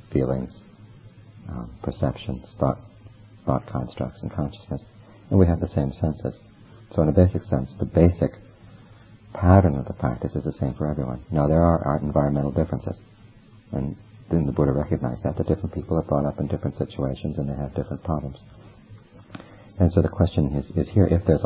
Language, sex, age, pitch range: Thai, male, 50-69, 70-95 Hz